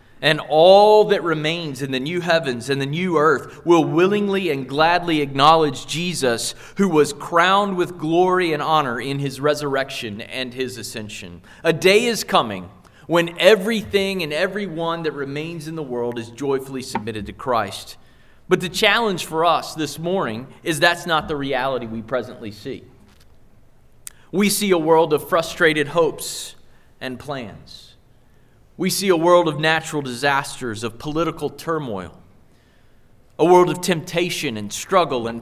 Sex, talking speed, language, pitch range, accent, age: male, 150 wpm, English, 125-175 Hz, American, 30-49